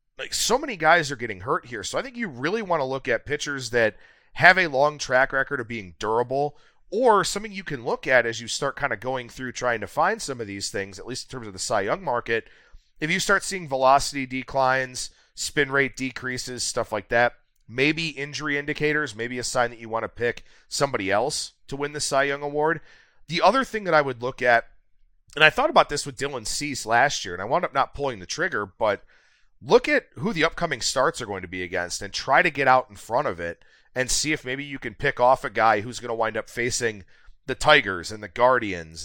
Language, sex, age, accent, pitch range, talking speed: English, male, 30-49, American, 115-150 Hz, 240 wpm